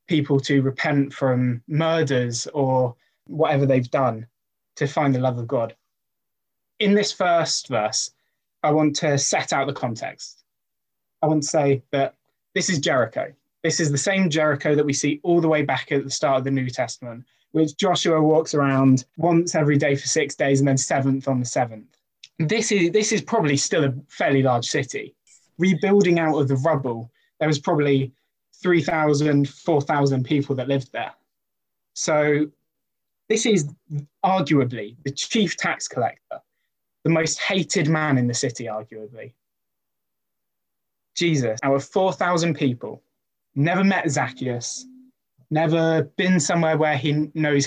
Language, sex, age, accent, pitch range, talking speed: English, male, 20-39, British, 135-165 Hz, 155 wpm